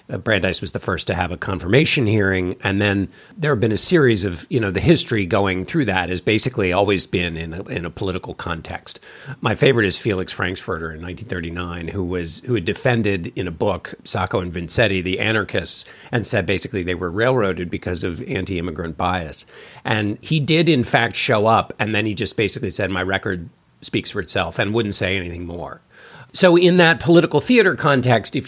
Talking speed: 195 wpm